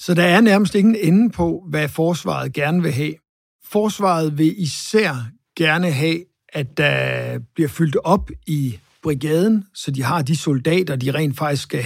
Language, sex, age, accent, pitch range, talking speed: Danish, male, 60-79, native, 140-180 Hz, 165 wpm